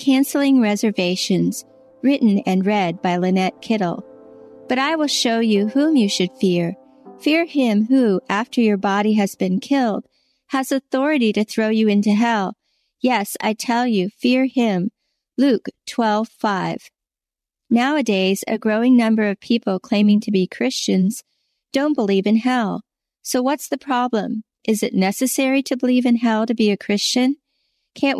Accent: American